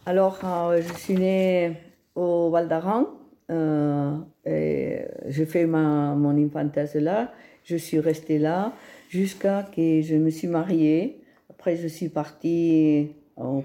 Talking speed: 140 wpm